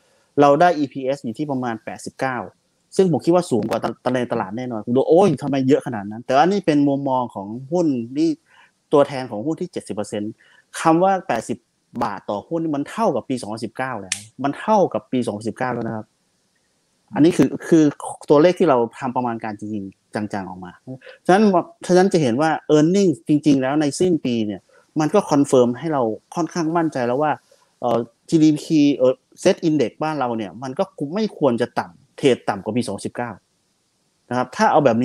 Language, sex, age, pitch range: Thai, male, 30-49, 120-155 Hz